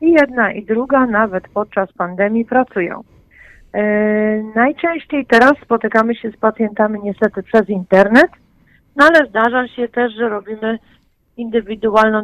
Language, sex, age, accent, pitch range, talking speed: Polish, female, 40-59, native, 205-240 Hz, 125 wpm